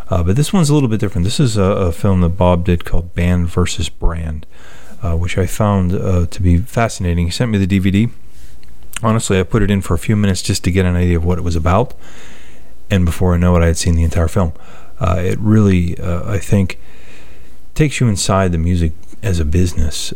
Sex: male